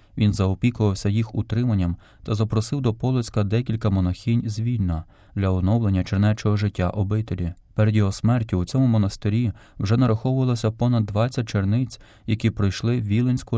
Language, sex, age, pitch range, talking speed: Ukrainian, male, 20-39, 100-120 Hz, 135 wpm